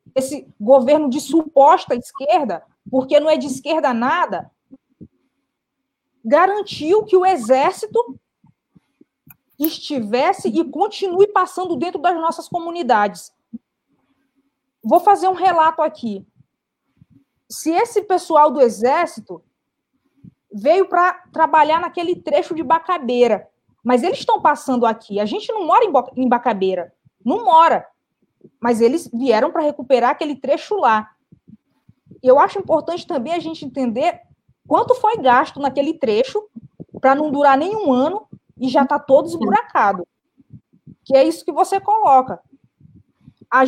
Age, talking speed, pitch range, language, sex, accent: 20-39, 125 wpm, 260-345 Hz, Portuguese, female, Brazilian